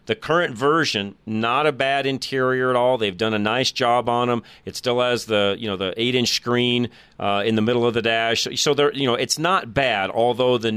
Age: 40-59